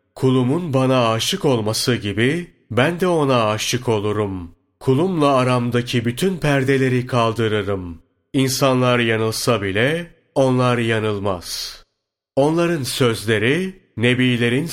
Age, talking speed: 40-59, 95 wpm